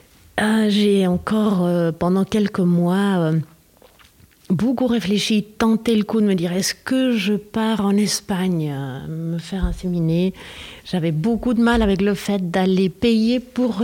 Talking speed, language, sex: 165 wpm, French, female